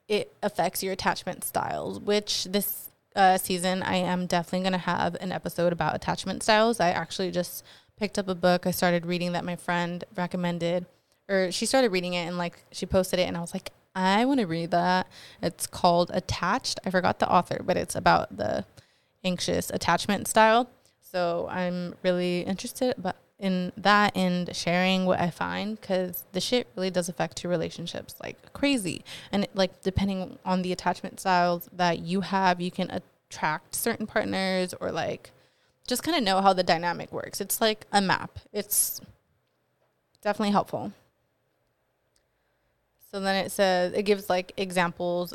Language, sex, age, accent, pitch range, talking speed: English, female, 20-39, American, 175-195 Hz, 170 wpm